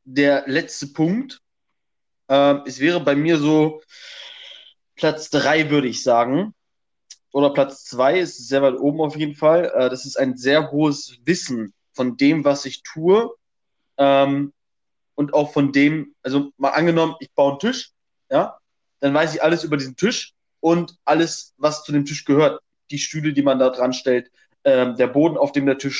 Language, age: German, 20-39